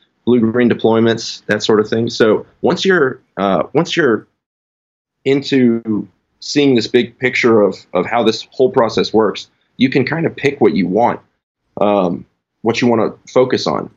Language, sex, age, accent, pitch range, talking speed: English, male, 30-49, American, 105-125 Hz, 170 wpm